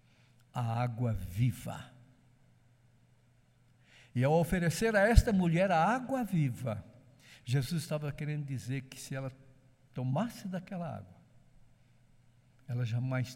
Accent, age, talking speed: Brazilian, 60-79, 110 wpm